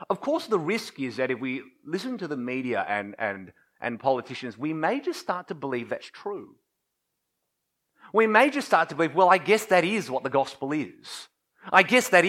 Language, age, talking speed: English, 30-49, 205 wpm